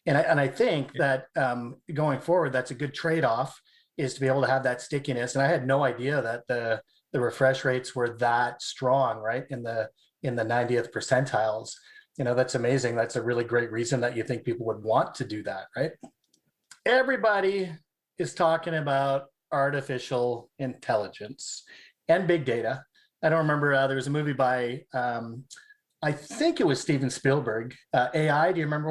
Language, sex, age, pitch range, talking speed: English, male, 30-49, 125-150 Hz, 185 wpm